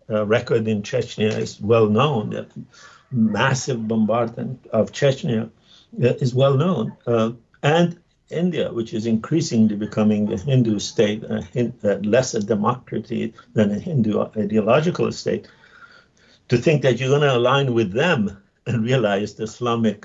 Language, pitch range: English, 110-135 Hz